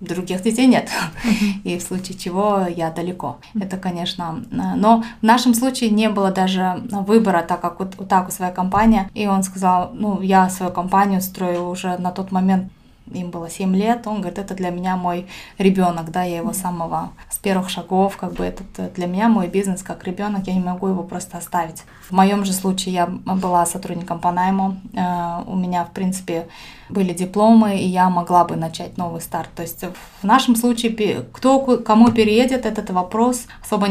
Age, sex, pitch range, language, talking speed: 20-39, female, 180-210 Hz, Russian, 185 wpm